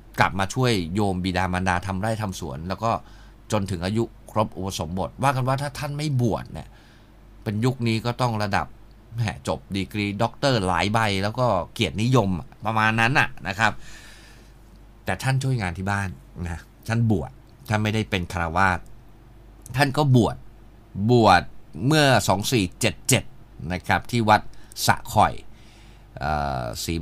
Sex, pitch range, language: male, 90-115 Hz, Thai